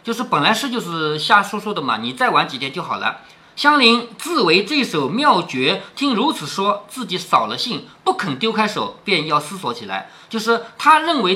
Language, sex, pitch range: Chinese, male, 180-275 Hz